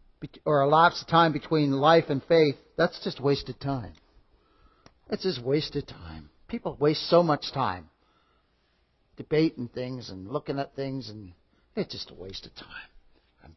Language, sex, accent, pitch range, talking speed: English, male, American, 125-175 Hz, 155 wpm